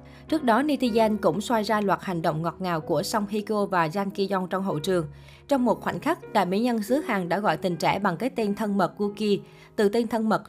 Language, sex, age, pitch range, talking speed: Vietnamese, female, 20-39, 180-230 Hz, 245 wpm